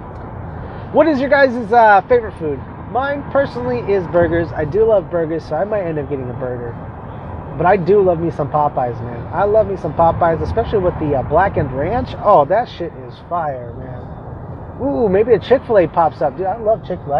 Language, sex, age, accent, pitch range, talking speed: English, male, 30-49, American, 145-200 Hz, 200 wpm